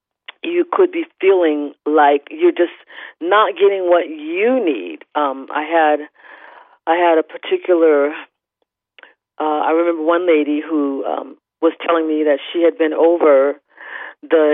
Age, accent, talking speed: 40-59, American, 145 wpm